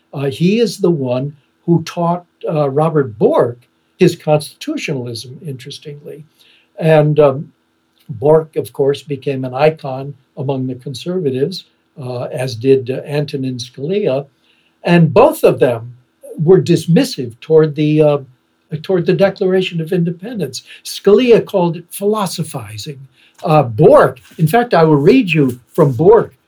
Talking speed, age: 130 wpm, 60-79